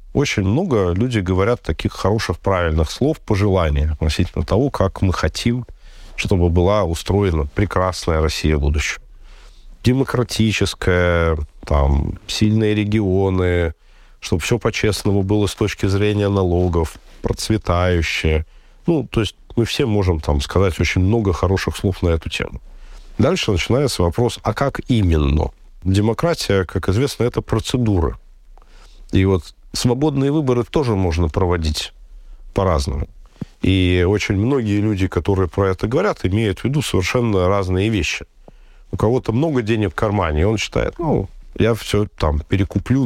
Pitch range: 85-110 Hz